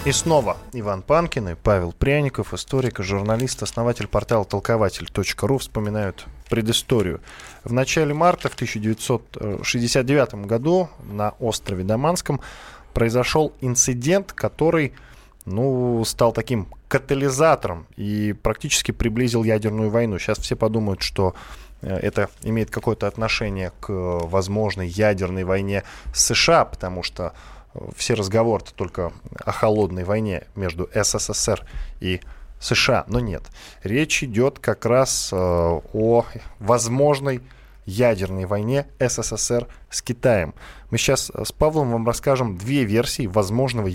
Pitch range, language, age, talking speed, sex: 100-125 Hz, Russian, 20-39, 110 wpm, male